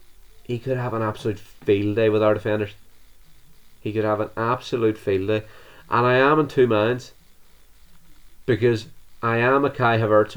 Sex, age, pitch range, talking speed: male, 20-39, 105-125 Hz, 170 wpm